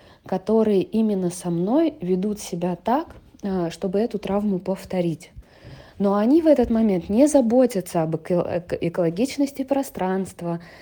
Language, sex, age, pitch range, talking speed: English, female, 20-39, 170-220 Hz, 115 wpm